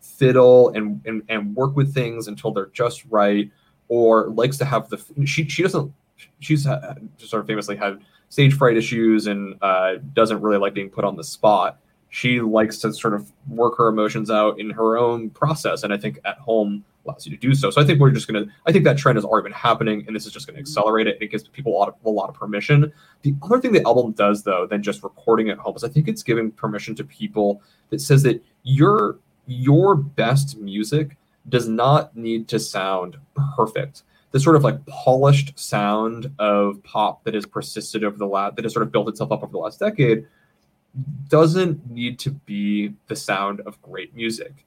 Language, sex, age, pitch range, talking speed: English, male, 20-39, 105-140 Hz, 215 wpm